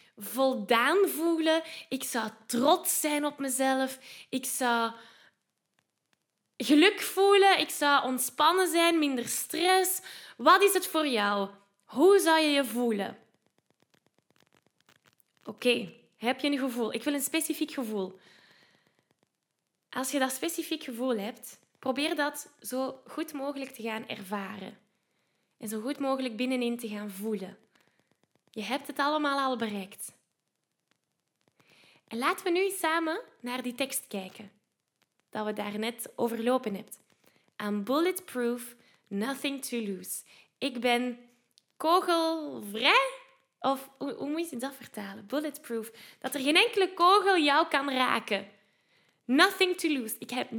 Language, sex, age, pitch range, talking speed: Dutch, female, 10-29, 230-320 Hz, 130 wpm